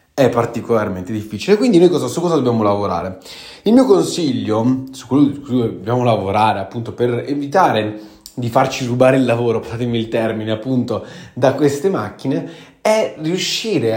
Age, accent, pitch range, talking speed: 30-49, native, 115-150 Hz, 155 wpm